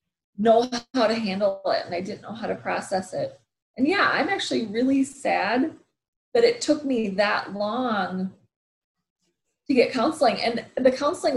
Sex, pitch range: female, 200-250 Hz